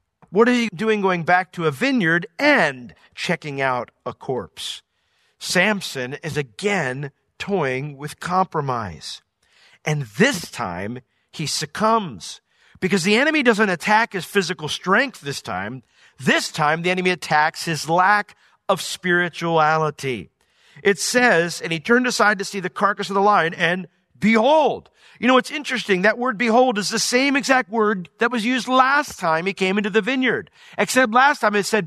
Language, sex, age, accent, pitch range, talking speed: English, male, 50-69, American, 145-220 Hz, 160 wpm